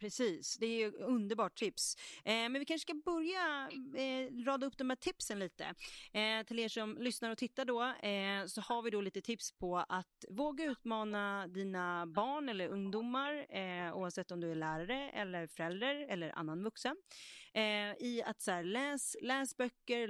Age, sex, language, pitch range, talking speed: 30-49, female, Swedish, 180-245 Hz, 180 wpm